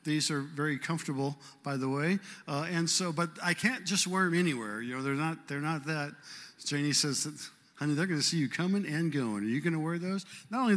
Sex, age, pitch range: male, 50-69, 130-175 Hz